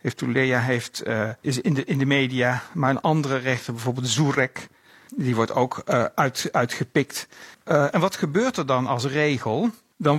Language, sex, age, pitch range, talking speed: English, male, 60-79, 135-195 Hz, 185 wpm